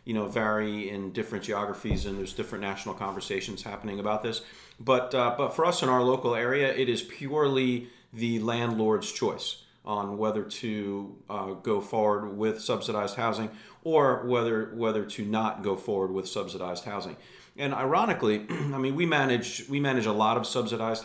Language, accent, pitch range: English, American, 105-125 Hz